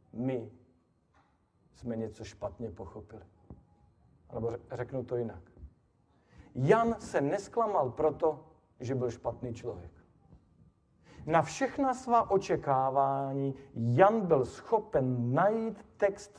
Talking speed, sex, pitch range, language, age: 95 wpm, male, 120-165 Hz, Slovak, 40-59